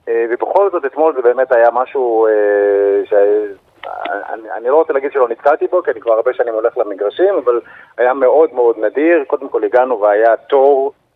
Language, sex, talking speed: Hebrew, male, 165 wpm